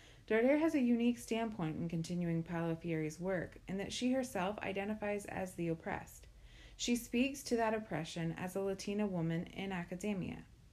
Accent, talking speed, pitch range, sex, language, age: American, 155 wpm, 170-215 Hz, female, English, 30-49